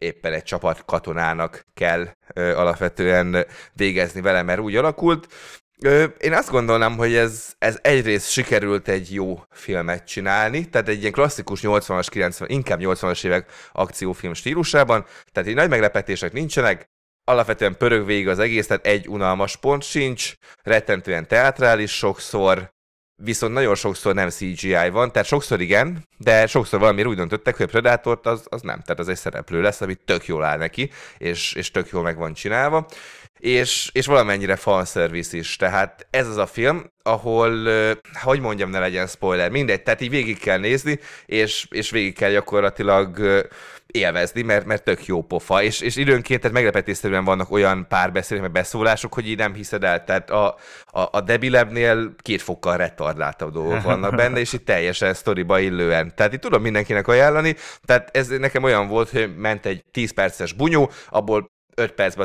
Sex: male